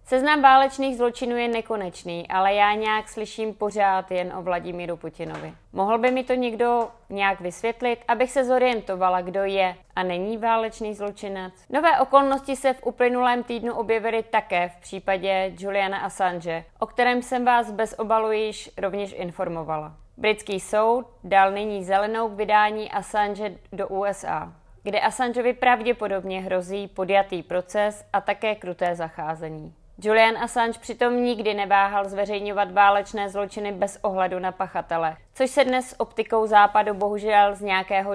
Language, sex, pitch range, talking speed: Czech, female, 190-230 Hz, 140 wpm